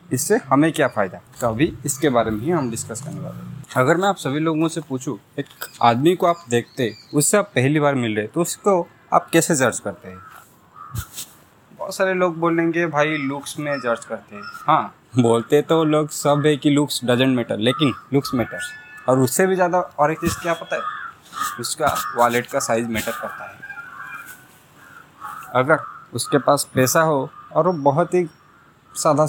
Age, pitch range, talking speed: 20-39, 130-160 Hz, 175 wpm